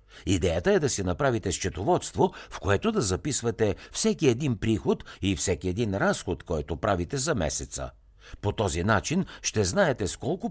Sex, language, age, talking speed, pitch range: male, Bulgarian, 60-79, 160 wpm, 85-120 Hz